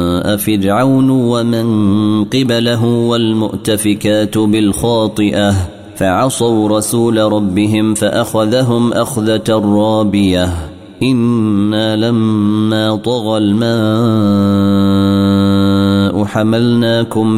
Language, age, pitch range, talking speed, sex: Arabic, 30-49, 100-115 Hz, 55 wpm, male